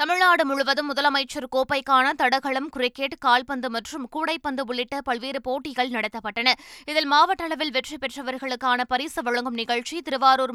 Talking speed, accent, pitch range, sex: 125 wpm, native, 245-290 Hz, female